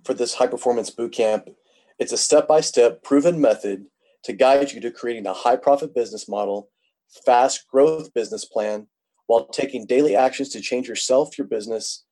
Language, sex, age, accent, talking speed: English, male, 30-49, American, 155 wpm